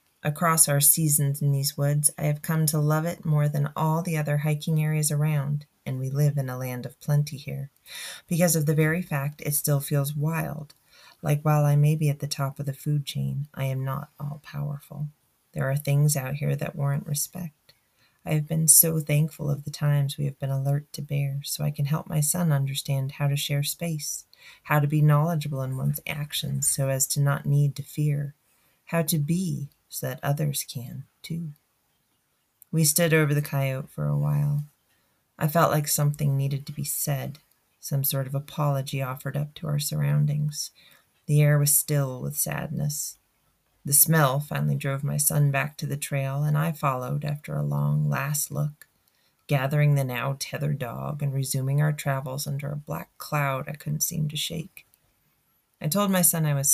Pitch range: 140-150 Hz